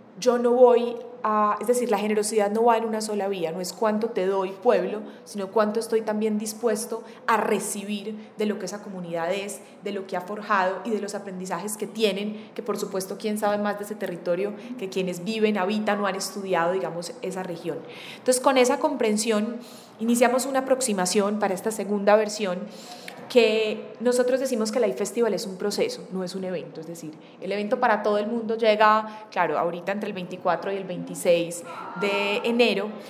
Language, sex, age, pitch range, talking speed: Spanish, female, 20-39, 190-225 Hz, 190 wpm